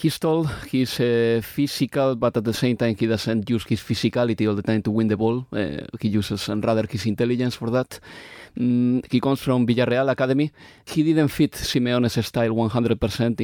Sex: male